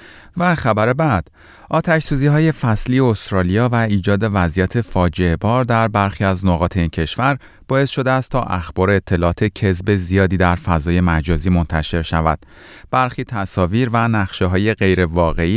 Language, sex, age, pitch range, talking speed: Persian, male, 30-49, 85-120 Hz, 145 wpm